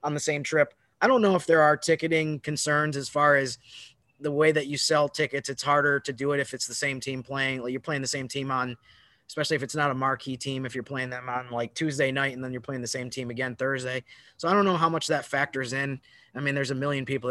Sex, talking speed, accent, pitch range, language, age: male, 270 wpm, American, 125-150 Hz, English, 20-39